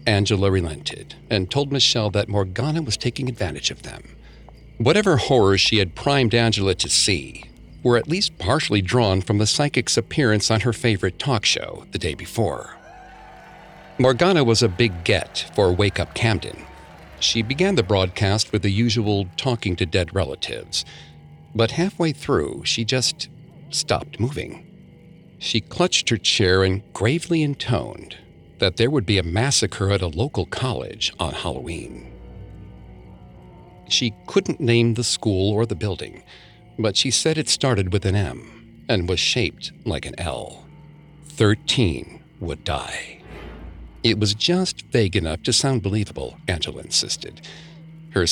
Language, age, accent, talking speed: English, 50-69, American, 150 wpm